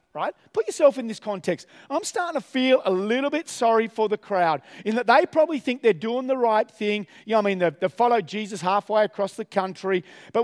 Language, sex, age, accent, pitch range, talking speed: English, male, 40-59, Australian, 205-260 Hz, 230 wpm